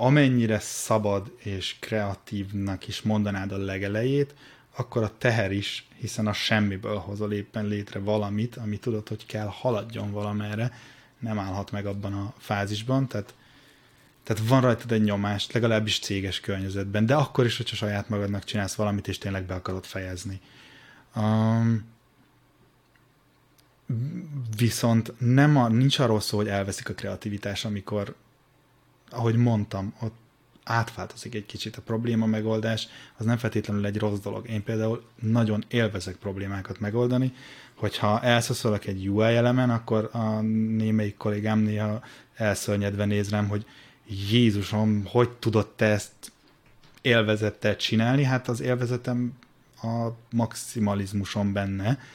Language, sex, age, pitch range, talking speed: Hungarian, male, 20-39, 100-120 Hz, 130 wpm